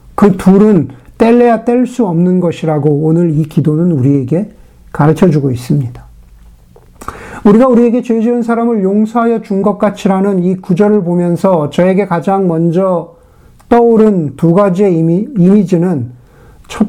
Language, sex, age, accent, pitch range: Korean, male, 50-69, native, 150-200 Hz